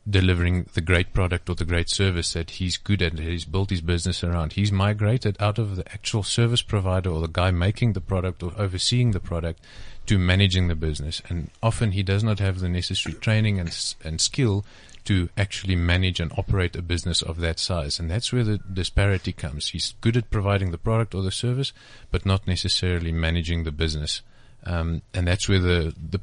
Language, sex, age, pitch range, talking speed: English, male, 30-49, 85-105 Hz, 205 wpm